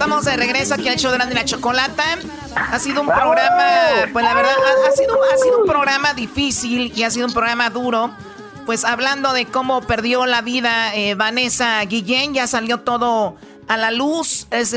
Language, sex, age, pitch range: Spanish, male, 40-59, 235-270 Hz